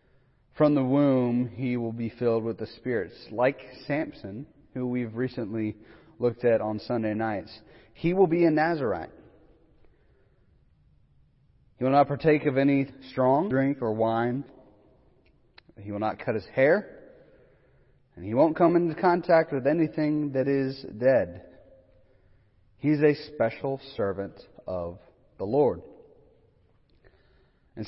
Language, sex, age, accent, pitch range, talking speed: English, male, 30-49, American, 110-145 Hz, 130 wpm